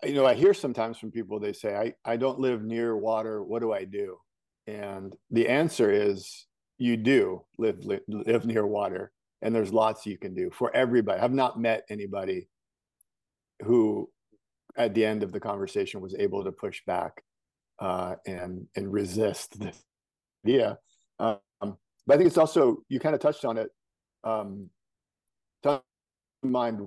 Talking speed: 170 wpm